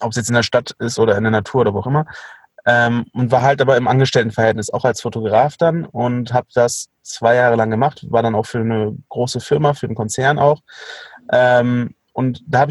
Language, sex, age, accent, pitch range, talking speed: German, male, 30-49, German, 120-140 Hz, 225 wpm